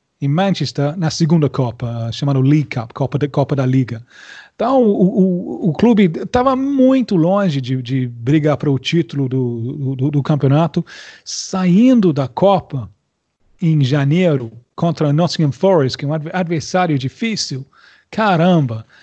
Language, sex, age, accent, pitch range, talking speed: Portuguese, male, 40-59, Brazilian, 135-180 Hz, 140 wpm